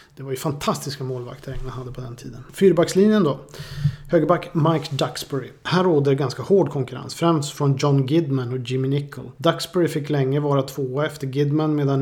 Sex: male